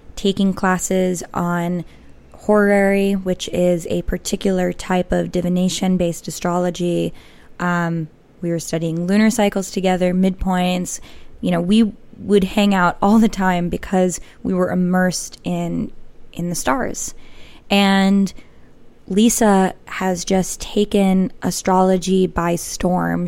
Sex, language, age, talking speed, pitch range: female, English, 20-39, 120 wpm, 175-200 Hz